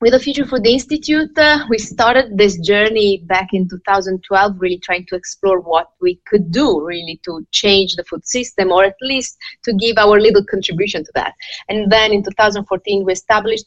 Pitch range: 185-220 Hz